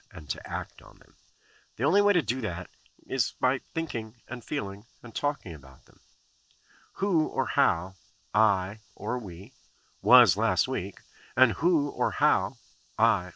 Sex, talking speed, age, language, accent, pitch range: male, 155 wpm, 50-69, English, American, 90-130 Hz